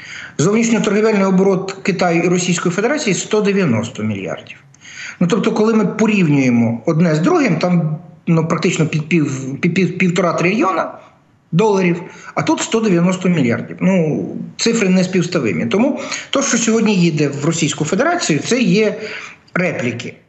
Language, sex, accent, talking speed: Ukrainian, male, native, 135 wpm